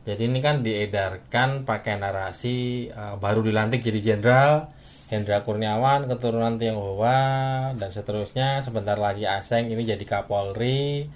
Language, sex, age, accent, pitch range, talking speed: Indonesian, male, 20-39, native, 95-120 Hz, 125 wpm